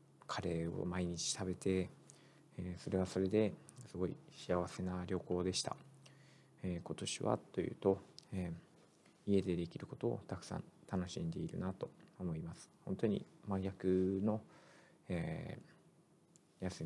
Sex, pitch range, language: male, 90-110 Hz, Japanese